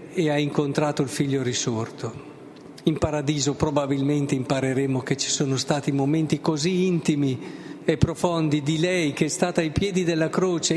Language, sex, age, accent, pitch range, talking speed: Italian, male, 50-69, native, 145-175 Hz, 155 wpm